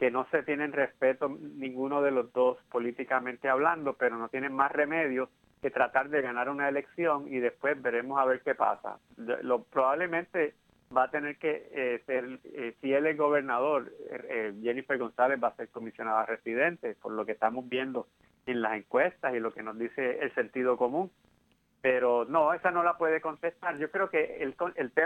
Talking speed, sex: 185 wpm, male